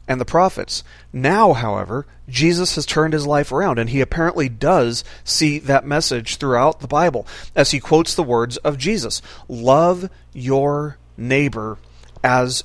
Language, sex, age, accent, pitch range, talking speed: English, male, 40-59, American, 120-160 Hz, 150 wpm